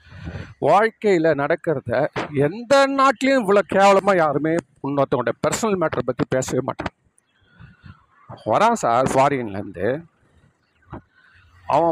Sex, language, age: male, Tamil, 50-69